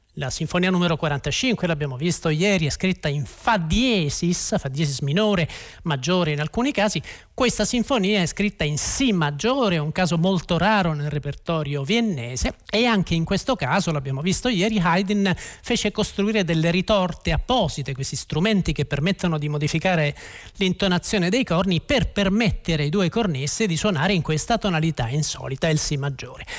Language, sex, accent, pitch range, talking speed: Italian, male, native, 160-220 Hz, 160 wpm